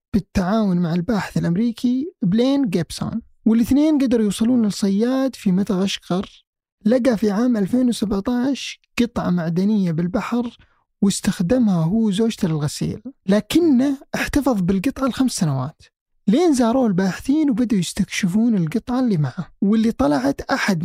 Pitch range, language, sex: 185-240 Hz, Arabic, male